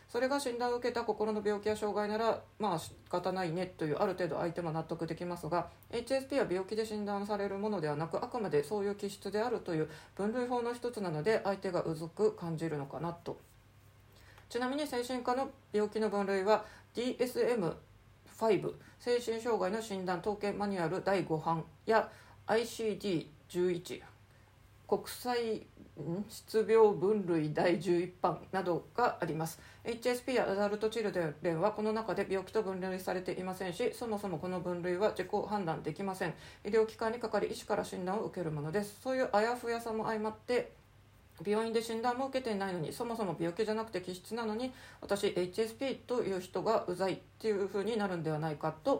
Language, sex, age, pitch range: Japanese, female, 40-59, 175-225 Hz